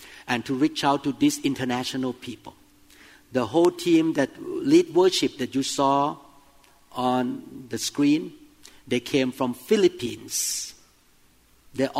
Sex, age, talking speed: male, 50-69, 125 wpm